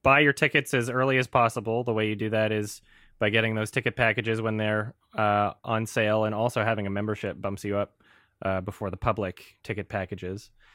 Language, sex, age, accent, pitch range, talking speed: English, male, 20-39, American, 105-125 Hz, 205 wpm